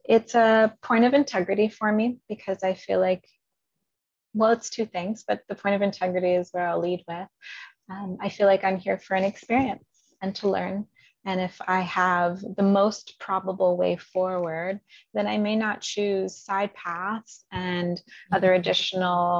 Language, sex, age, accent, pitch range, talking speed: English, female, 20-39, American, 175-205 Hz, 175 wpm